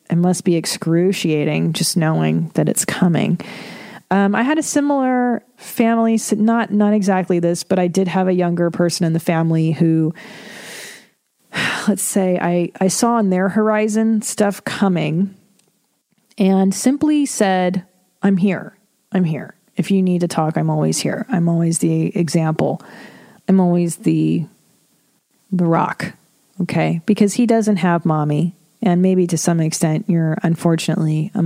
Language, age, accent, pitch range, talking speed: English, 30-49, American, 165-215 Hz, 150 wpm